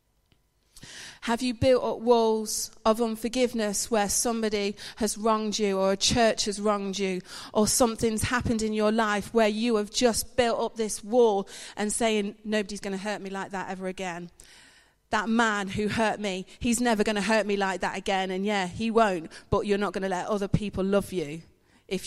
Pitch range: 205-245 Hz